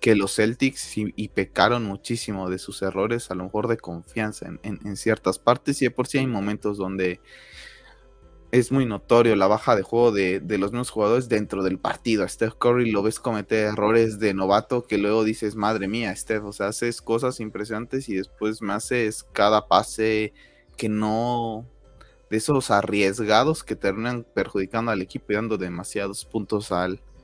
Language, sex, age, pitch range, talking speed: Spanish, male, 20-39, 100-120 Hz, 185 wpm